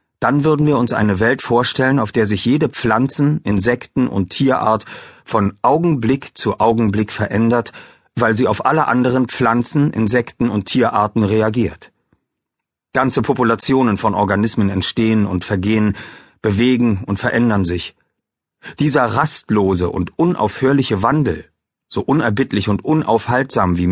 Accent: German